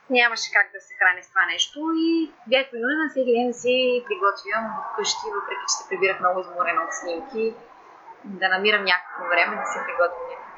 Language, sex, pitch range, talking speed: Bulgarian, female, 205-300 Hz, 185 wpm